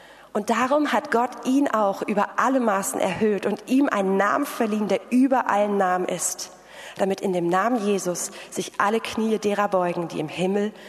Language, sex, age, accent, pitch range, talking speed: German, female, 30-49, German, 185-220 Hz, 180 wpm